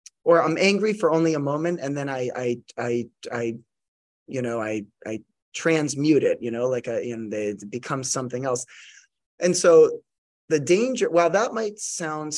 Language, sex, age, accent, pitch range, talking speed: English, male, 20-39, American, 120-145 Hz, 170 wpm